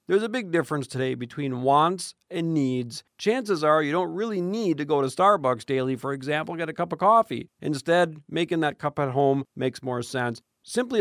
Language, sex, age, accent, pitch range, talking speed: English, male, 40-59, American, 135-170 Hz, 200 wpm